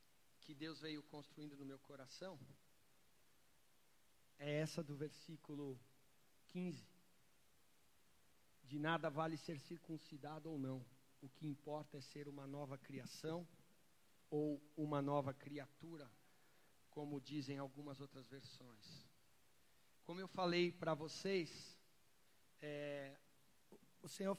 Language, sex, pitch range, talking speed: Portuguese, male, 140-160 Hz, 110 wpm